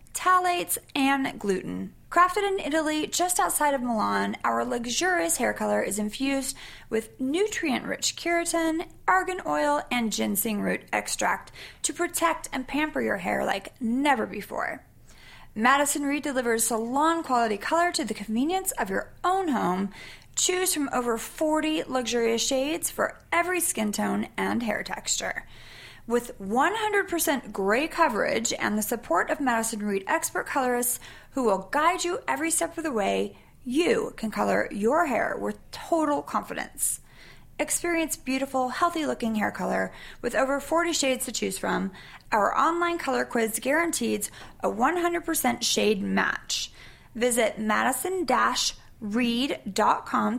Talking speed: 135 wpm